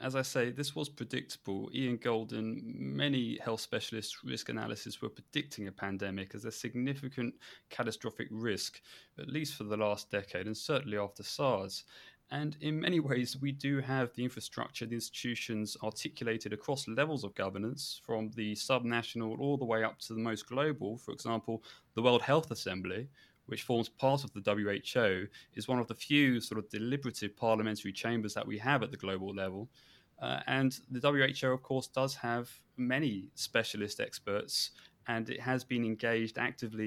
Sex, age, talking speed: male, 20-39, 170 wpm